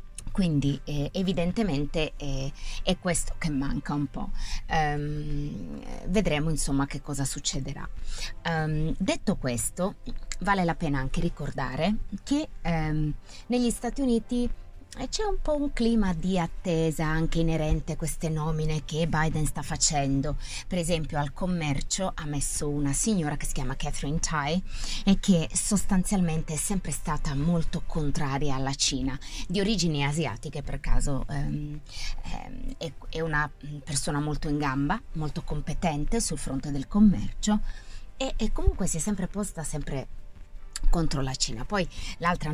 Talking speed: 135 wpm